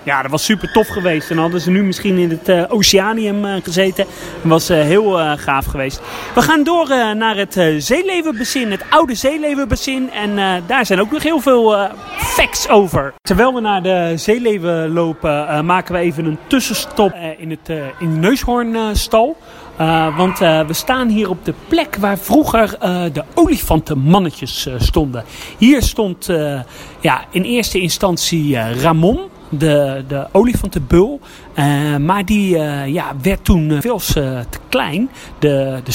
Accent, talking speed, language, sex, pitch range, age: Dutch, 175 wpm, Dutch, male, 160-220 Hz, 30-49